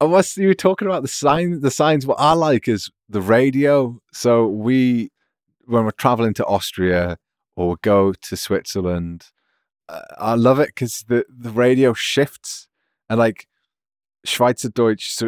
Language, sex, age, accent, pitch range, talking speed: English, male, 30-49, British, 100-130 Hz, 155 wpm